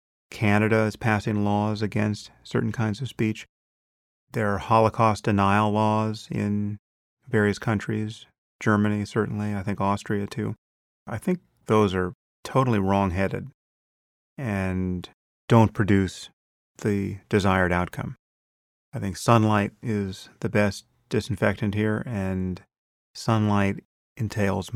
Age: 30-49